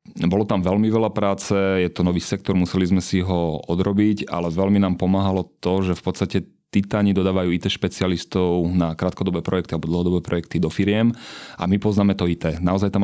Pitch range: 90-100 Hz